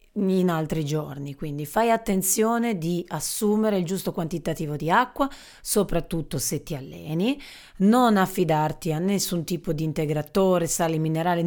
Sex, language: female, Italian